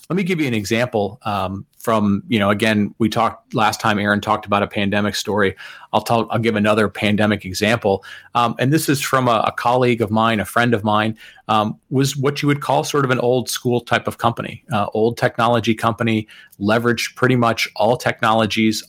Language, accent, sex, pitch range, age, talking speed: English, American, male, 105-125 Hz, 30-49, 205 wpm